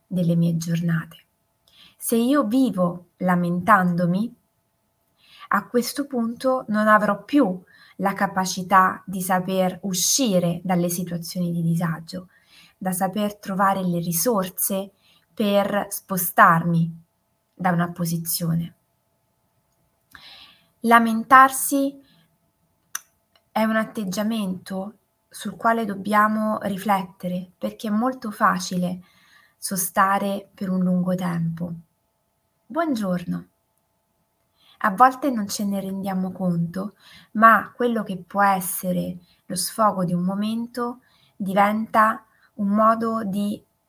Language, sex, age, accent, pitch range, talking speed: Italian, female, 20-39, native, 180-215 Hz, 95 wpm